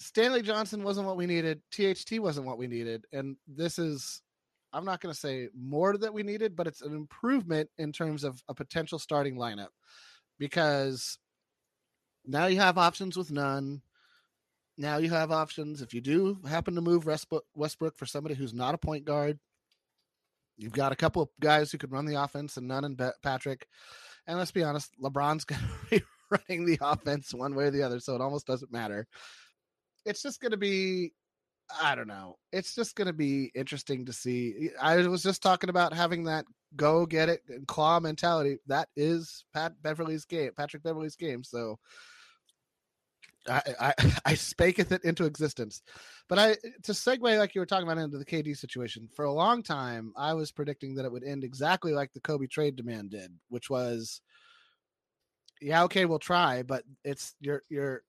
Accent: American